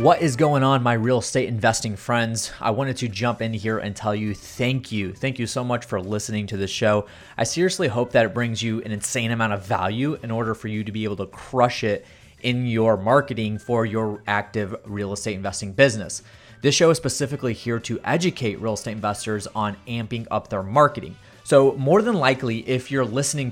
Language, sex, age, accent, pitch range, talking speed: English, male, 30-49, American, 110-125 Hz, 210 wpm